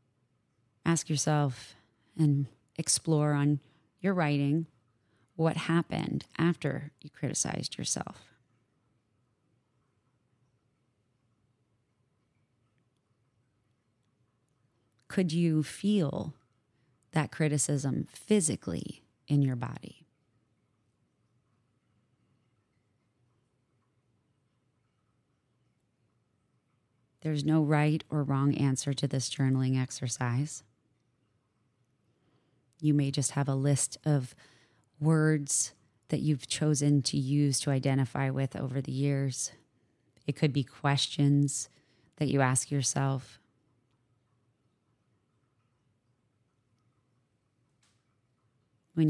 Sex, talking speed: female, 75 wpm